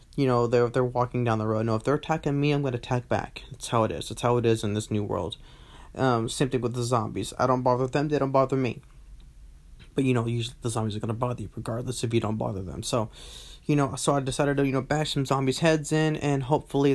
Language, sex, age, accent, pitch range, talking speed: English, male, 20-39, American, 115-135 Hz, 275 wpm